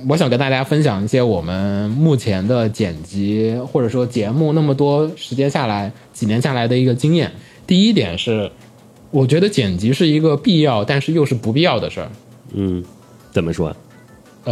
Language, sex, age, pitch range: Chinese, male, 20-39, 110-150 Hz